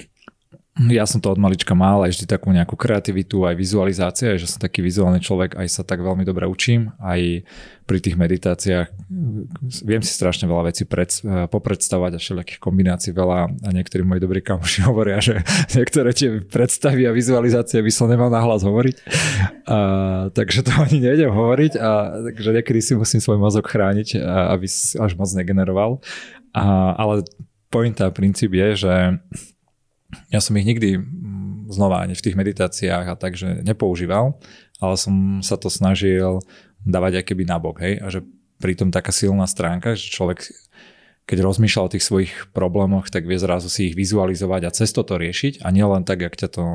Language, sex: Slovak, male